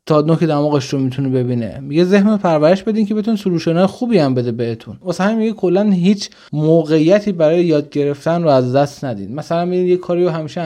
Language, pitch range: Persian, 145-190 Hz